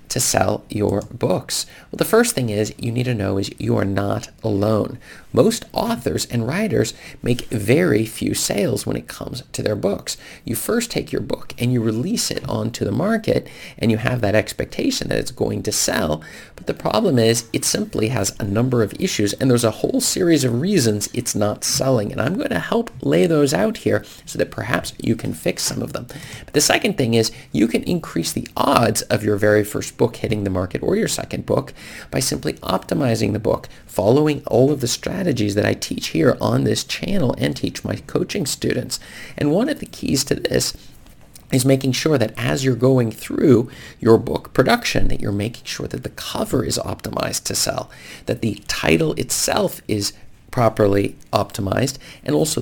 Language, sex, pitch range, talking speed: English, male, 105-135 Hz, 200 wpm